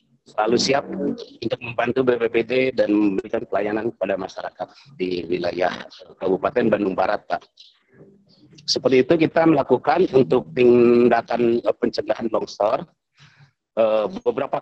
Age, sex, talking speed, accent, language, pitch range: 40-59, male, 105 wpm, native, Indonesian, 100-135 Hz